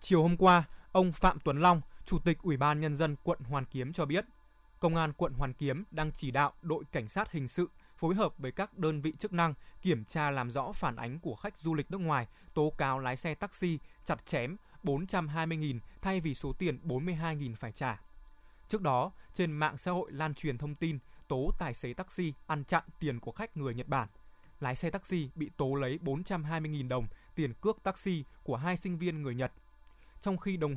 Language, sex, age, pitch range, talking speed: Vietnamese, male, 20-39, 135-175 Hz, 210 wpm